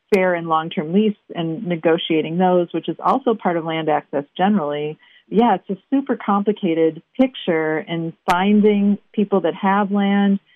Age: 40-59